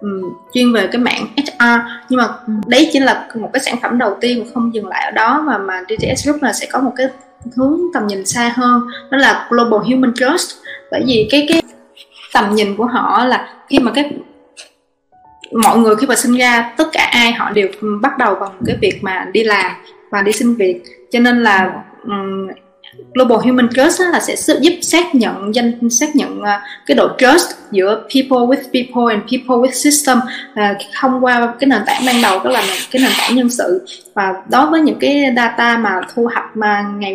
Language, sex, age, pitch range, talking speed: Vietnamese, female, 20-39, 215-270 Hz, 205 wpm